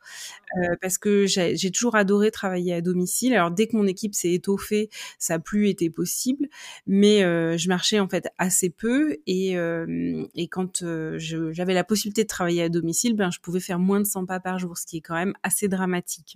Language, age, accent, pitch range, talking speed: French, 20-39, French, 175-215 Hz, 220 wpm